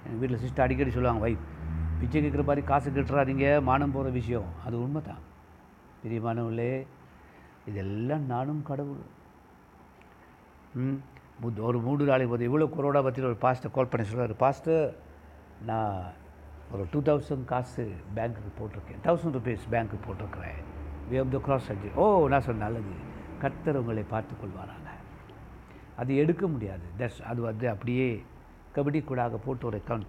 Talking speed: 135 wpm